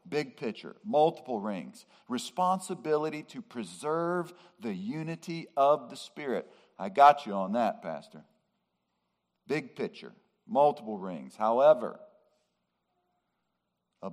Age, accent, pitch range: 50-69, American, 145-210 Hz